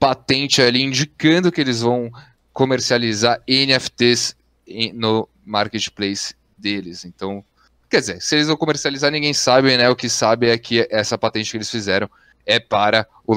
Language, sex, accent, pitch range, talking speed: Portuguese, male, Brazilian, 100-135 Hz, 155 wpm